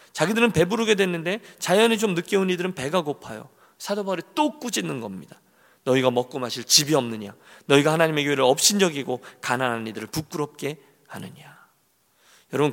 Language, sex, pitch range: Korean, male, 140-190 Hz